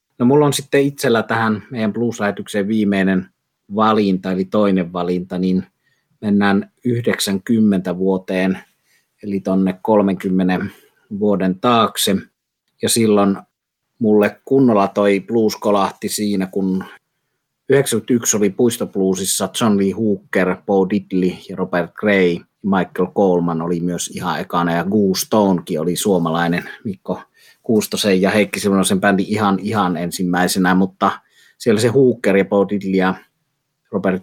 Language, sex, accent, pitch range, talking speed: Finnish, male, native, 95-105 Hz, 120 wpm